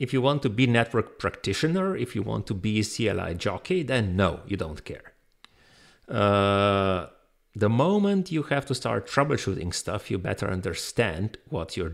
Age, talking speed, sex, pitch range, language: 40-59, 170 wpm, male, 100-135 Hz, English